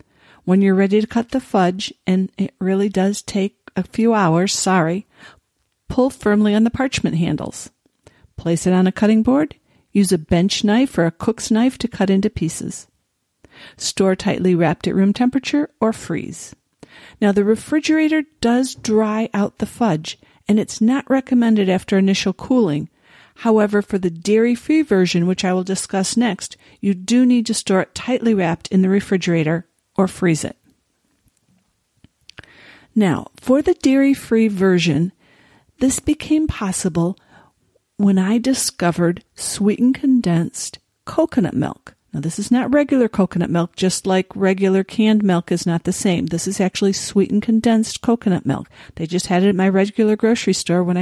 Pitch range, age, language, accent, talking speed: 185-230 Hz, 50-69, English, American, 160 wpm